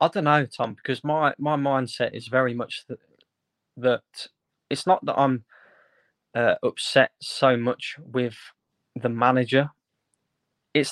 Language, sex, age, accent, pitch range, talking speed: English, male, 20-39, British, 120-145 Hz, 135 wpm